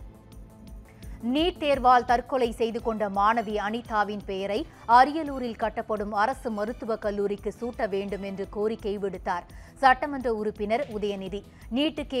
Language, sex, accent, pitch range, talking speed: Tamil, female, native, 210-275 Hz, 110 wpm